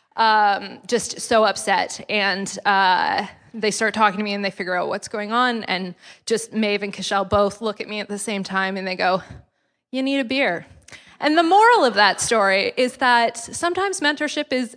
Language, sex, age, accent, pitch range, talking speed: English, female, 20-39, American, 195-260 Hz, 200 wpm